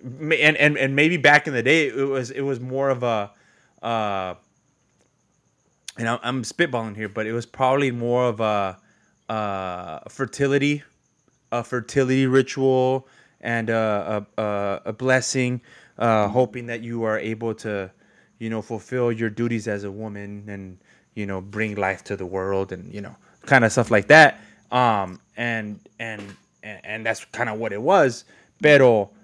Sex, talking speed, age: male, 170 wpm, 20-39